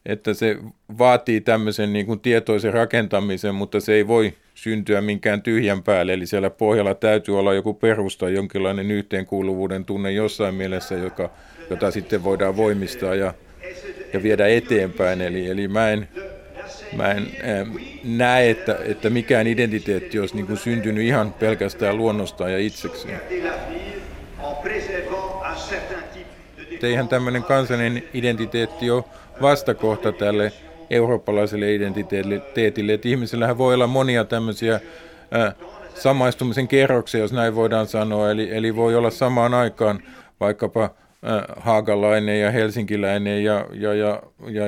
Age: 50-69